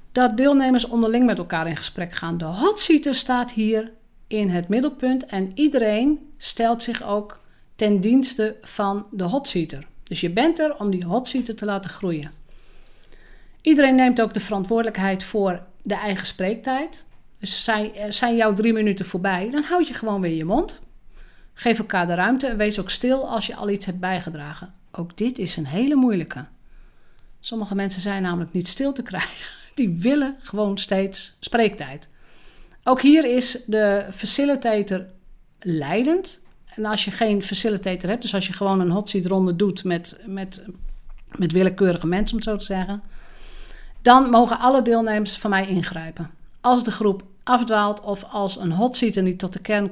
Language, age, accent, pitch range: Dutch, 50-69, Dutch, 185-235 Hz